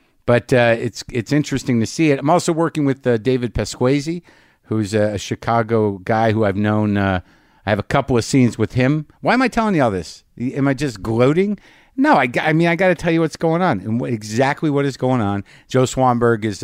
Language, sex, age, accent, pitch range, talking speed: English, male, 50-69, American, 105-135 Hz, 235 wpm